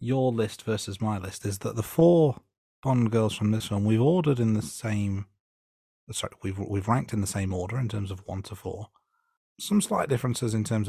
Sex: male